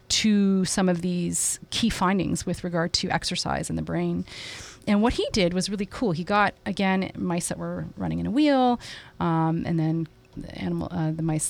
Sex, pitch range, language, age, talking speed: female, 165-210 Hz, English, 30-49, 200 wpm